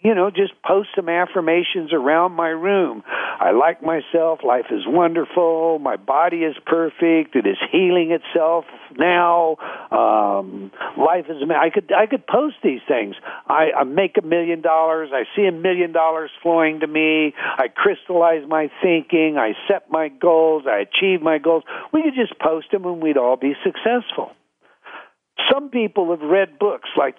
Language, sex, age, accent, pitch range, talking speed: English, male, 60-79, American, 160-215 Hz, 170 wpm